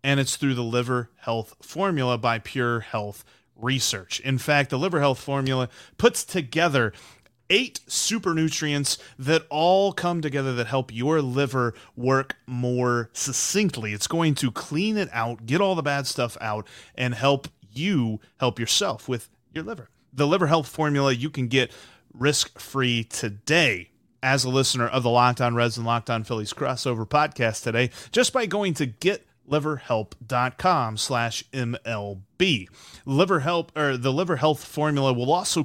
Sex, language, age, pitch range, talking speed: male, English, 30-49, 120-155 Hz, 155 wpm